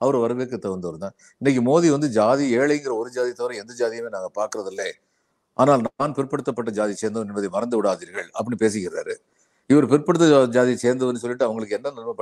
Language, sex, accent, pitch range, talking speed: Tamil, male, native, 120-160 Hz, 165 wpm